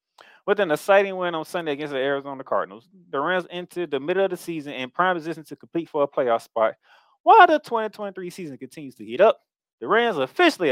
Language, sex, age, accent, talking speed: English, male, 20-39, American, 215 wpm